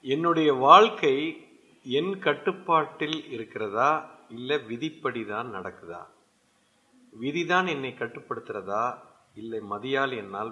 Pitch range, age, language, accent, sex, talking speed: 130-200 Hz, 50-69, Tamil, native, male, 80 wpm